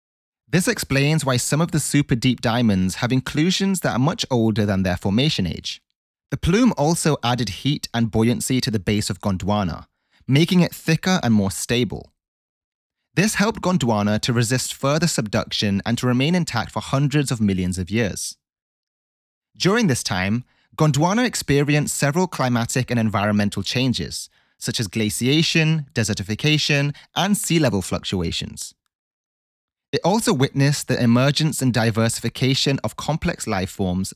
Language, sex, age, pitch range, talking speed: English, male, 30-49, 105-150 Hz, 145 wpm